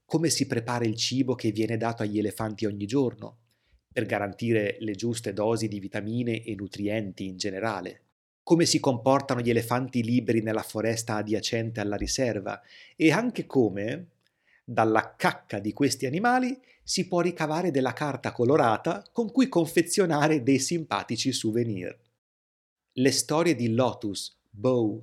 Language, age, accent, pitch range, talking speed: Italian, 30-49, native, 110-150 Hz, 140 wpm